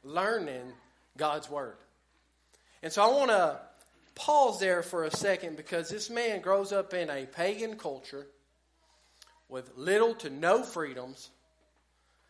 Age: 40-59